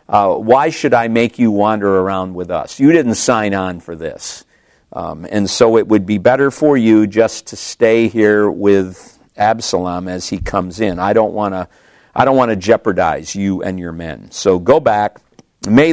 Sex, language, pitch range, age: male, English, 95-120 Hz, 50-69